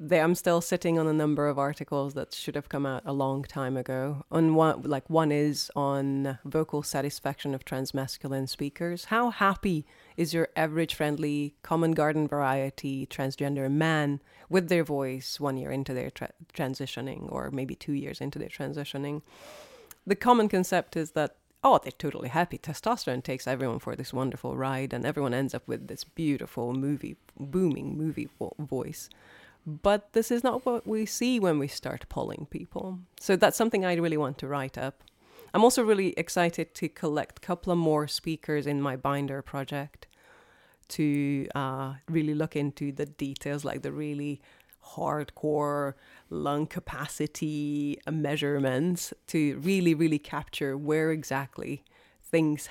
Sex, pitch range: female, 140-165 Hz